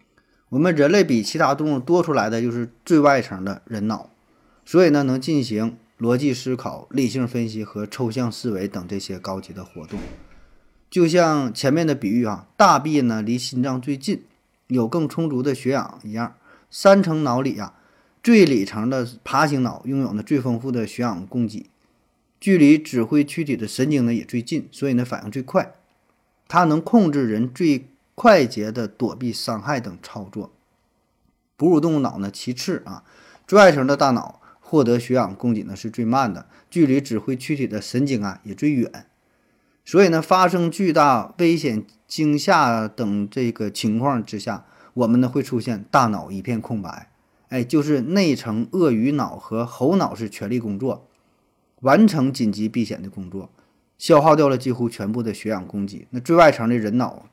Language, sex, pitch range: Chinese, male, 110-145 Hz